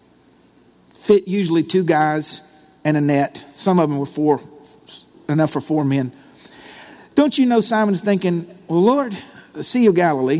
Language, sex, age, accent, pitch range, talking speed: English, male, 50-69, American, 180-240 Hz, 150 wpm